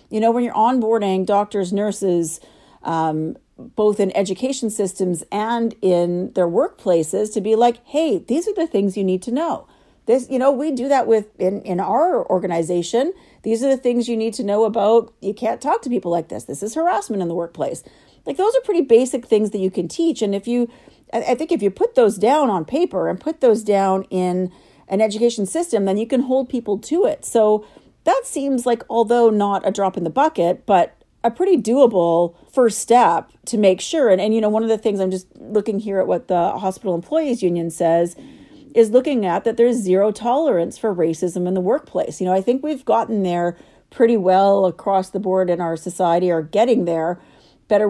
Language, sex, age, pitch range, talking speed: English, female, 40-59, 185-245 Hz, 210 wpm